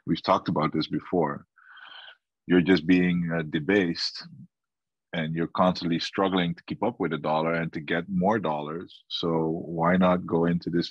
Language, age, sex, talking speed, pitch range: English, 20-39, male, 170 wpm, 85-105 Hz